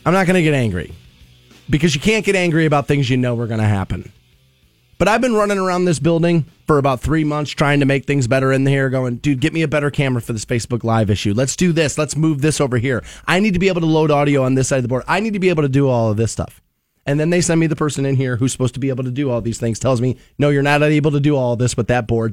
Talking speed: 310 wpm